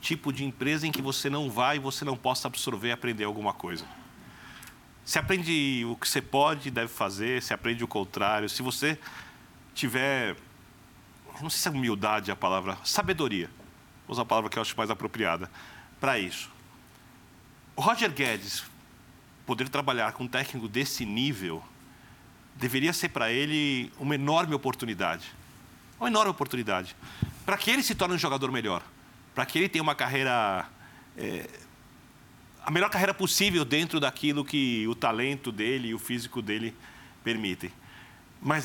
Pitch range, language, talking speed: 115-145 Hz, Portuguese, 155 wpm